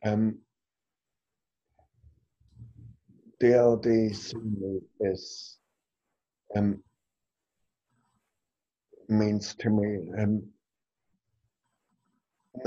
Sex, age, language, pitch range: male, 50-69, English, 95-115 Hz